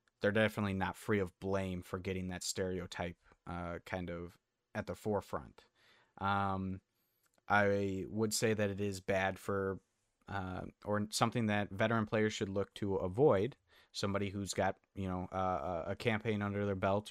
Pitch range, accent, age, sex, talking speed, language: 95-105 Hz, American, 30-49, male, 160 wpm, English